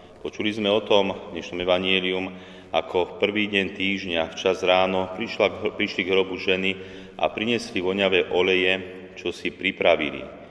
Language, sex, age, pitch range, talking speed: Slovak, male, 40-59, 85-100 Hz, 145 wpm